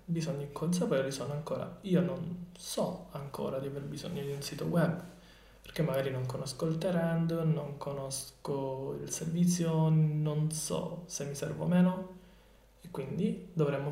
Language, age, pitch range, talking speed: Italian, 20-39, 150-180 Hz, 150 wpm